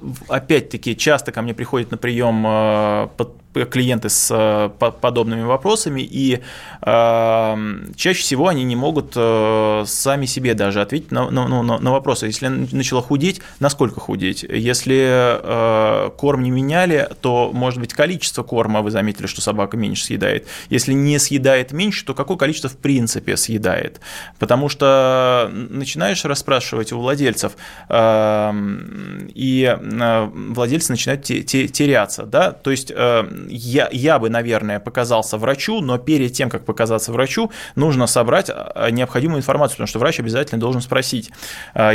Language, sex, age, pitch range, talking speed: Russian, male, 20-39, 115-140 Hz, 130 wpm